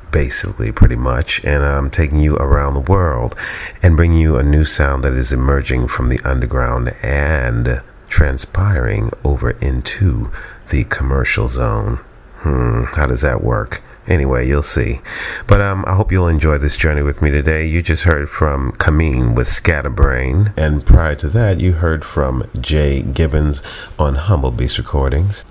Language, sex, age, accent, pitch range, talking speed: English, male, 40-59, American, 70-90 Hz, 160 wpm